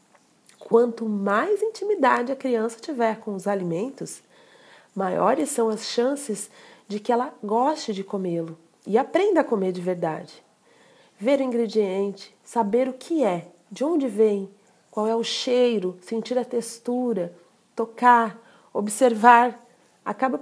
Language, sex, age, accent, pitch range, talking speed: Portuguese, female, 40-59, Brazilian, 205-265 Hz, 130 wpm